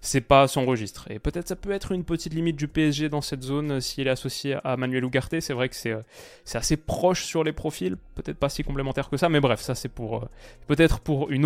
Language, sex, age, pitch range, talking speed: French, male, 20-39, 120-150 Hz, 265 wpm